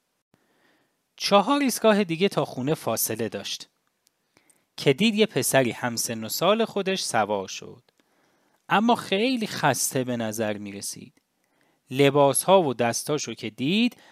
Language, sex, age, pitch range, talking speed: English, male, 30-49, 115-185 Hz, 130 wpm